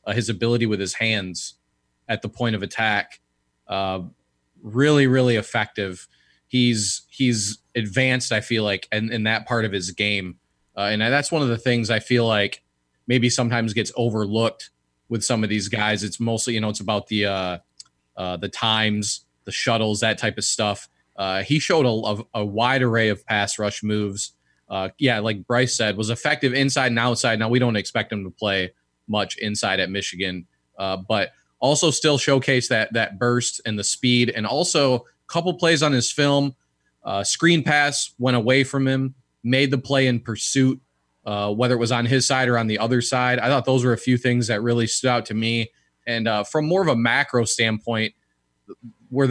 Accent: American